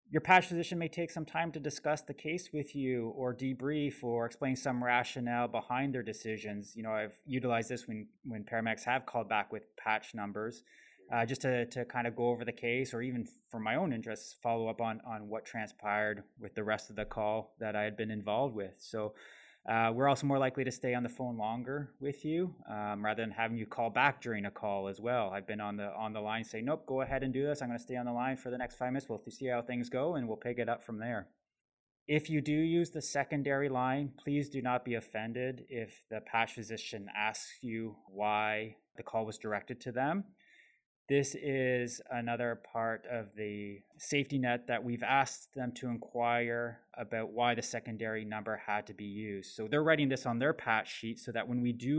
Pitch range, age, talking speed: 110-130 Hz, 20-39, 225 wpm